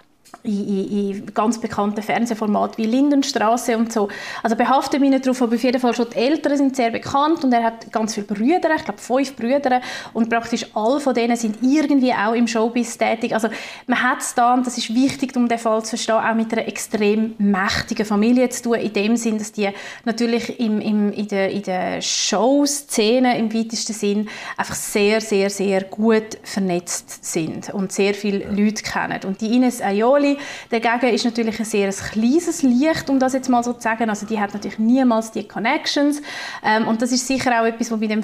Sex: female